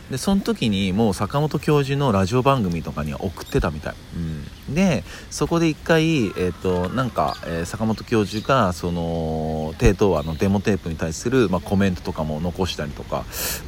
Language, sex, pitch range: Japanese, male, 85-120 Hz